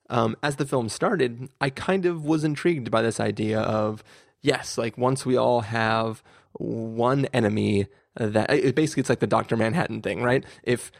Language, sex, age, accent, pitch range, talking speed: English, male, 20-39, American, 105-130 Hz, 180 wpm